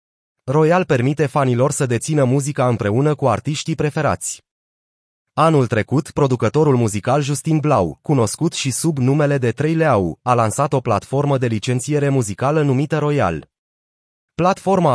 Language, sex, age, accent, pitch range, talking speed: Romanian, male, 30-49, native, 115-150 Hz, 130 wpm